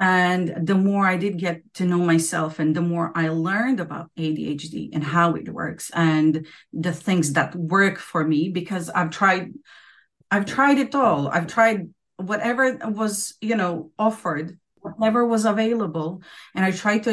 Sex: female